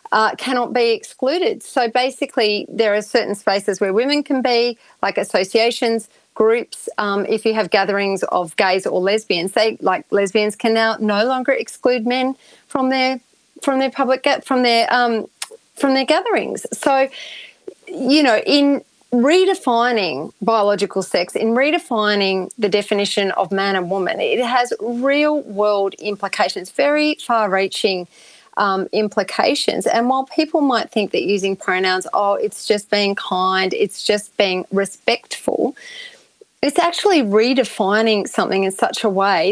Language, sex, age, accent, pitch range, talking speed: English, female, 30-49, Australian, 205-265 Hz, 145 wpm